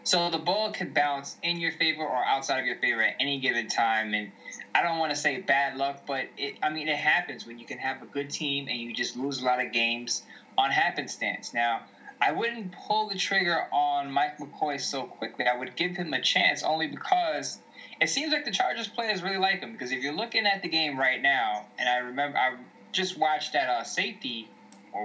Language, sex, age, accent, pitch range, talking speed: English, male, 10-29, American, 125-180 Hz, 230 wpm